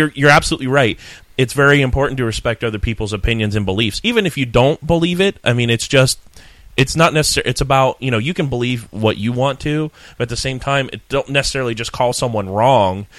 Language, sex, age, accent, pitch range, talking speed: English, male, 30-49, American, 100-120 Hz, 225 wpm